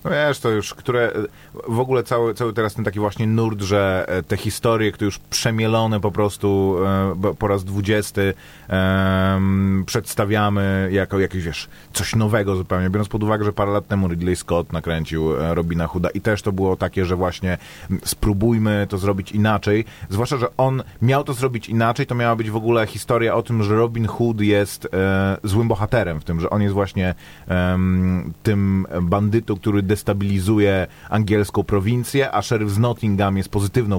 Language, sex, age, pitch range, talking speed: Polish, male, 30-49, 95-110 Hz, 170 wpm